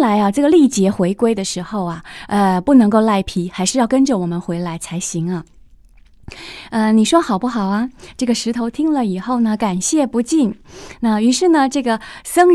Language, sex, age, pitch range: Chinese, female, 20-39, 195-265 Hz